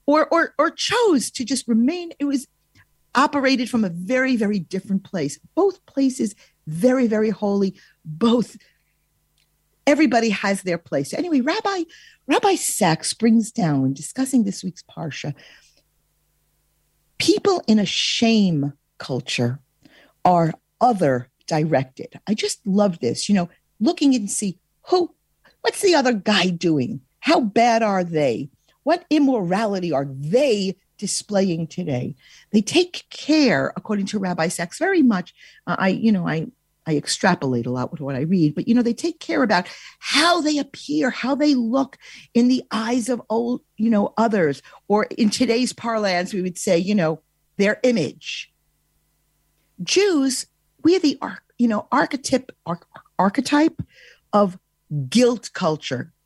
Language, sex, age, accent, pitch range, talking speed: English, female, 50-69, American, 175-265 Hz, 140 wpm